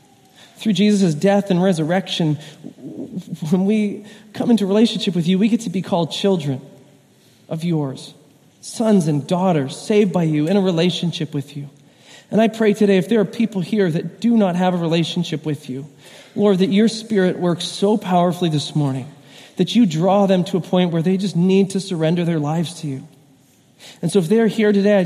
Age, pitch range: 40-59, 155-200 Hz